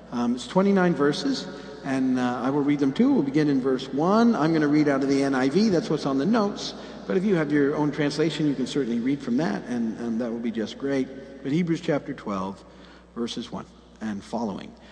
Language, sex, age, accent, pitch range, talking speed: English, male, 50-69, American, 140-200 Hz, 230 wpm